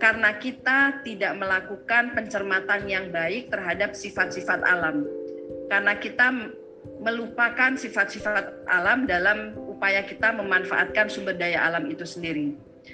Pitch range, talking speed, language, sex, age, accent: 180-235 Hz, 110 wpm, Indonesian, female, 30-49, native